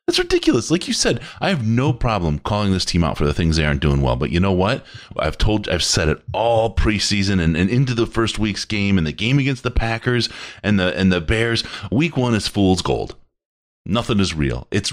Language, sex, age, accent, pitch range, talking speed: English, male, 30-49, American, 85-120 Hz, 235 wpm